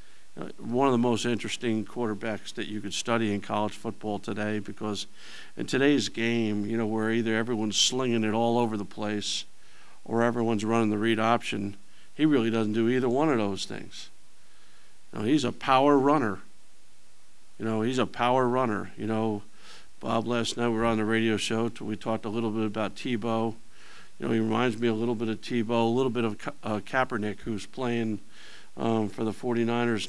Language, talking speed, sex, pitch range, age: English, 190 wpm, male, 105-120 Hz, 50-69